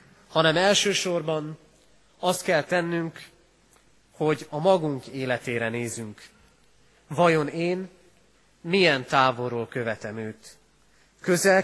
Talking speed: 90 wpm